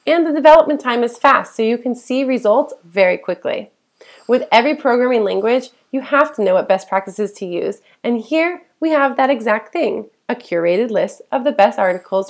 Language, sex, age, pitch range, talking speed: English, female, 20-39, 220-310 Hz, 195 wpm